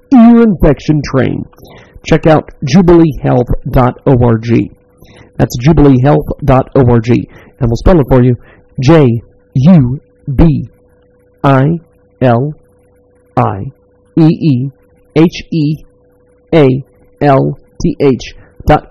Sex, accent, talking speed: male, American, 50 wpm